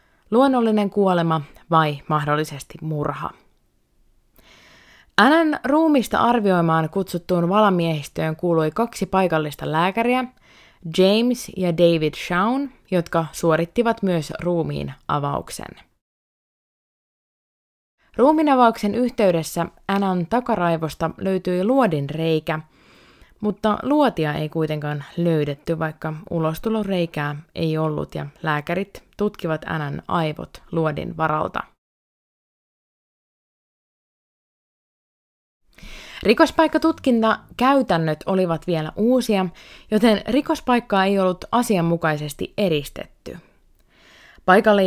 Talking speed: 75 wpm